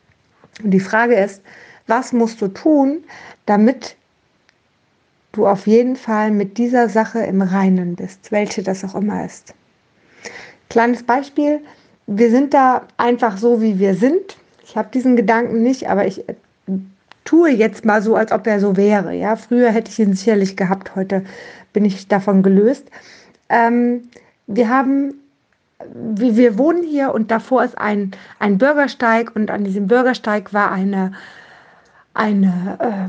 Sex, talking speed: female, 145 wpm